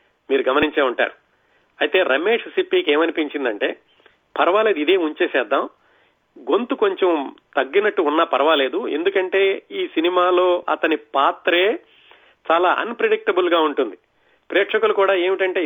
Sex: male